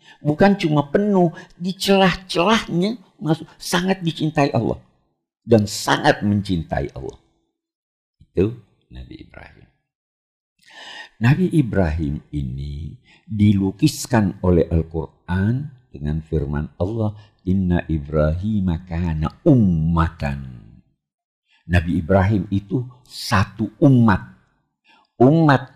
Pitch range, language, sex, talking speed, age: 95-155 Hz, Indonesian, male, 80 wpm, 50-69